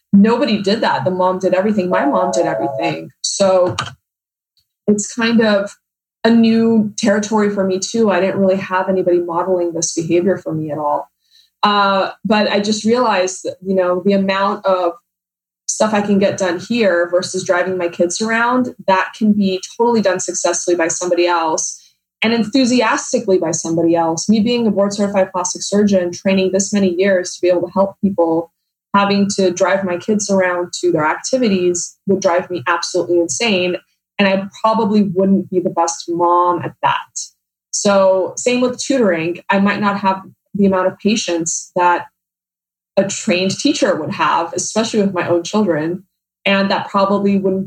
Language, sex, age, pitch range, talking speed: English, female, 20-39, 175-205 Hz, 170 wpm